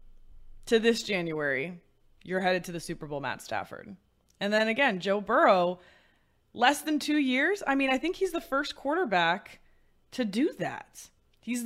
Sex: female